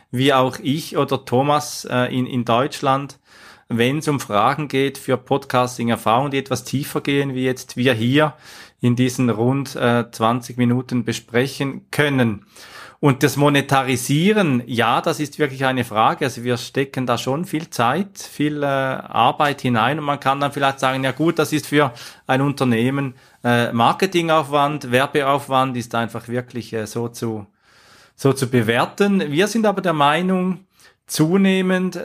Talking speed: 155 wpm